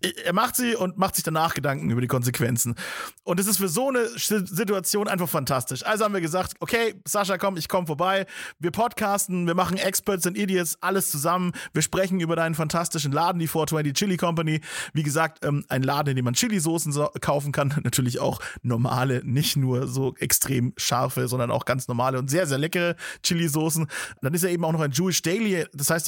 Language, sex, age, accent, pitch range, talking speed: German, male, 30-49, German, 145-180 Hz, 200 wpm